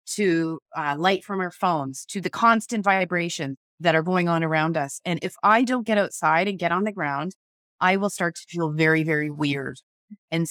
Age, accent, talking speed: 30-49, American, 205 wpm